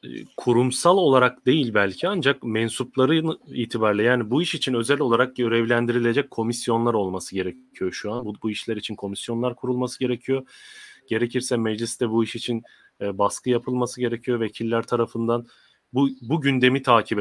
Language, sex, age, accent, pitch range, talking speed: German, male, 30-49, Turkish, 110-135 Hz, 145 wpm